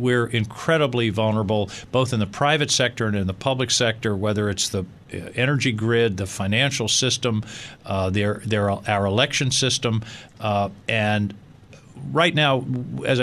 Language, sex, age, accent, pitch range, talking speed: English, male, 50-69, American, 110-135 Hz, 135 wpm